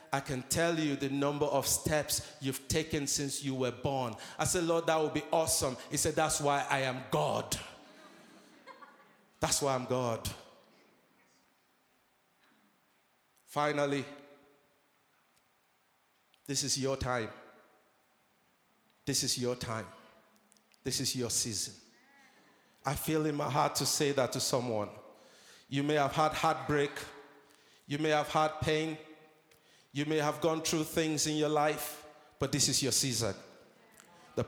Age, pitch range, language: 50-69, 130-160 Hz, English